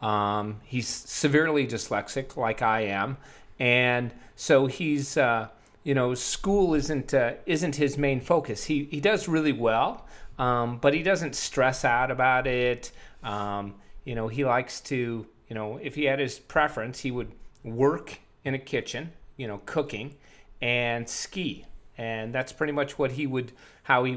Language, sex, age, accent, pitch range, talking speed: English, male, 40-59, American, 115-140 Hz, 165 wpm